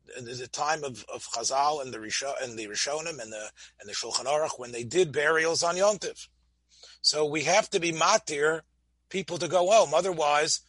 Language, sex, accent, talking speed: English, male, American, 190 wpm